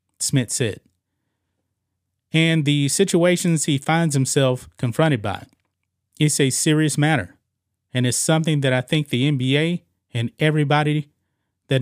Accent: American